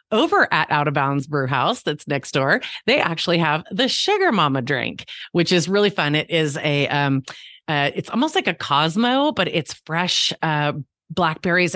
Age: 30-49